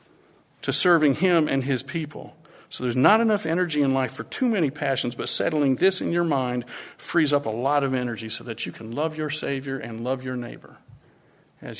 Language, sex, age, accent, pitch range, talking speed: English, male, 50-69, American, 120-140 Hz, 210 wpm